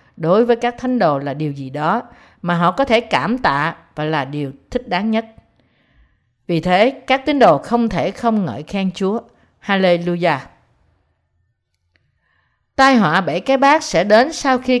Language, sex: Vietnamese, female